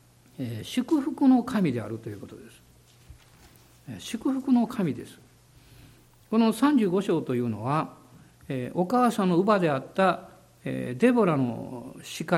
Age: 60-79